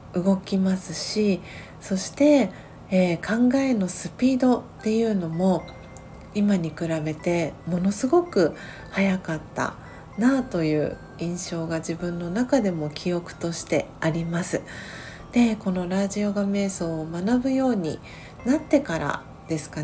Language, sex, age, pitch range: Japanese, female, 40-59, 165-215 Hz